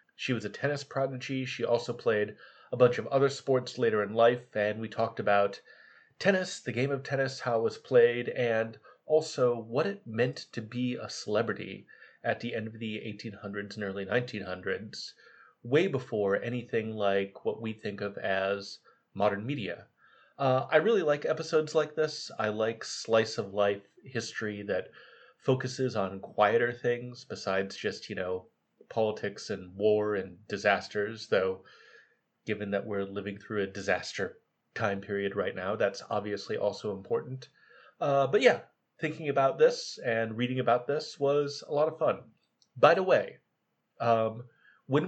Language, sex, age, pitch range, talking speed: English, male, 30-49, 105-135 Hz, 160 wpm